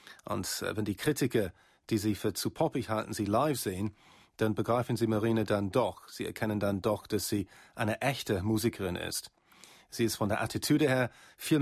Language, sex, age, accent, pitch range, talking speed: German, male, 40-59, German, 105-125 Hz, 185 wpm